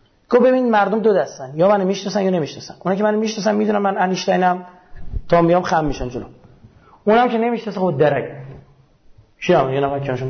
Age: 30-49